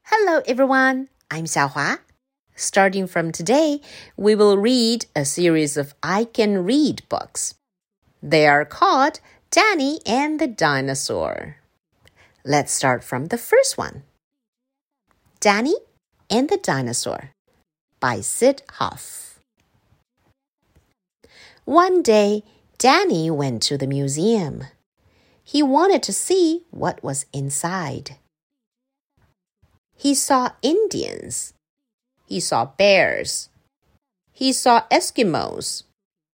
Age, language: 50-69, Chinese